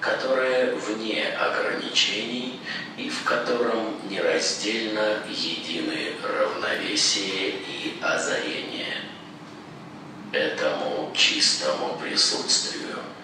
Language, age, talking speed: Russian, 50-69, 65 wpm